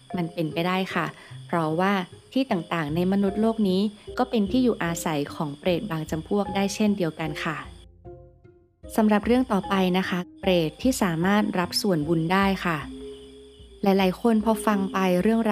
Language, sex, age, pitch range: Thai, female, 20-39, 170-215 Hz